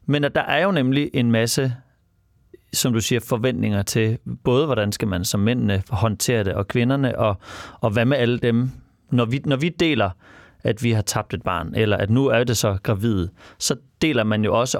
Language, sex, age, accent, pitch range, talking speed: Danish, male, 30-49, native, 105-125 Hz, 205 wpm